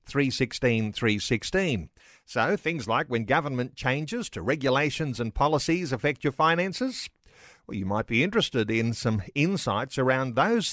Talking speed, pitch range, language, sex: 130 wpm, 120-155 Hz, English, male